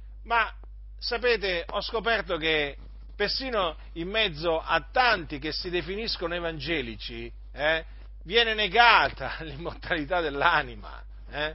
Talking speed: 100 wpm